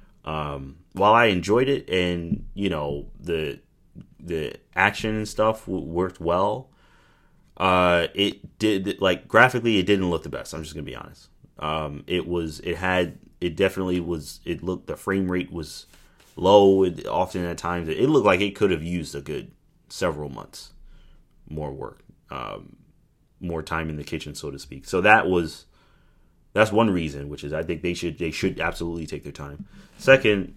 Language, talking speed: English, 175 wpm